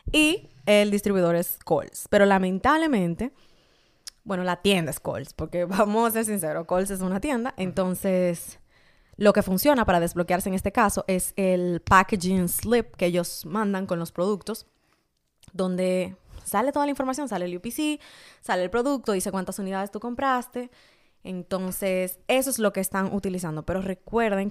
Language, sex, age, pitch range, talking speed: Spanish, female, 20-39, 180-220 Hz, 160 wpm